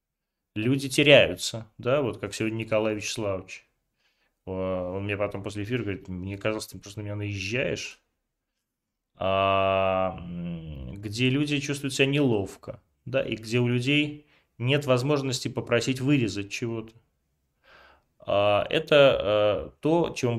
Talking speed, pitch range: 115 wpm, 100-140 Hz